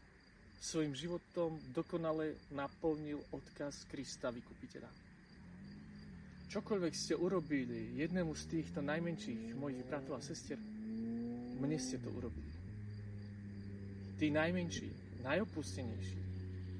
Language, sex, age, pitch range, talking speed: Slovak, male, 40-59, 90-150 Hz, 90 wpm